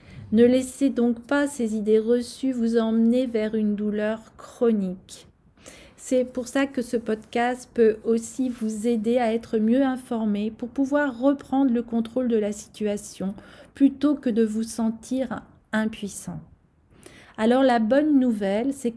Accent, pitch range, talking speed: French, 215-255 Hz, 145 wpm